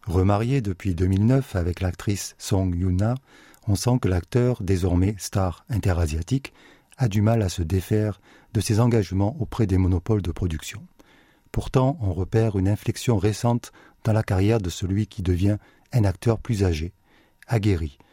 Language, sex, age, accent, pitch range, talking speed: French, male, 40-59, French, 95-115 Hz, 150 wpm